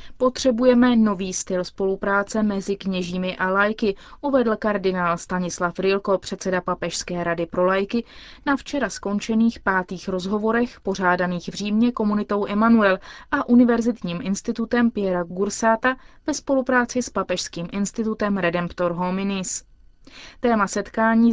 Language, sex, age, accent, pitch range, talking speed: Czech, female, 20-39, native, 185-230 Hz, 115 wpm